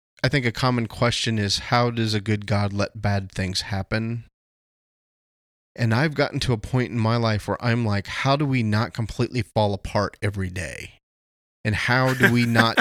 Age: 20-39